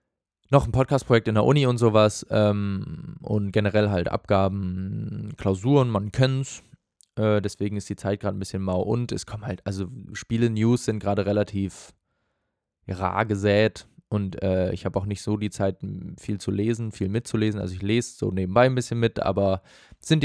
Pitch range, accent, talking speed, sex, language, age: 100-120 Hz, German, 180 wpm, male, German, 20-39